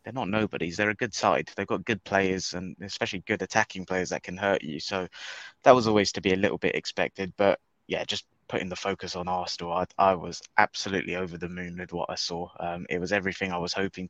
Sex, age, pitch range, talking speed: male, 20-39, 90-110 Hz, 240 wpm